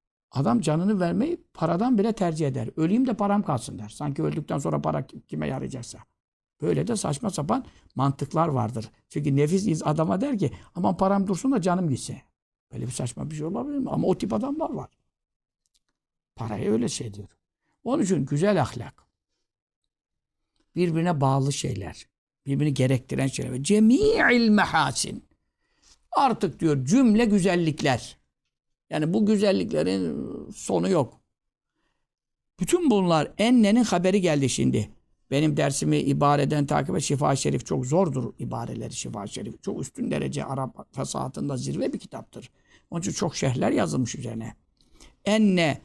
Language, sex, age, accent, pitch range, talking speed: Turkish, male, 60-79, native, 135-200 Hz, 135 wpm